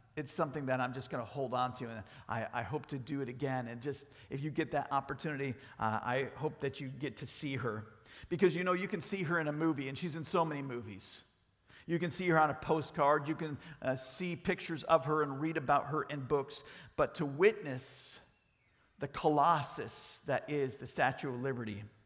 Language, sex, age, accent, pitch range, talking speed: English, male, 50-69, American, 125-160 Hz, 220 wpm